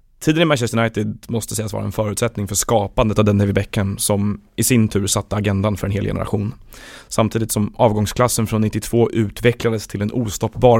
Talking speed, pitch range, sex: 190 wpm, 105-115 Hz, male